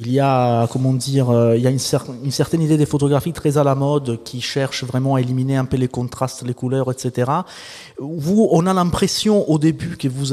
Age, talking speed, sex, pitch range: 30-49, 225 wpm, male, 125-155 Hz